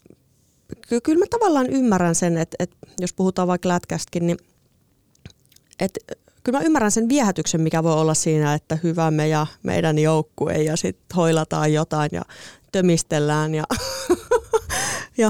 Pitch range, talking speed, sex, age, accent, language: 155-200 Hz, 140 wpm, female, 30-49, native, Finnish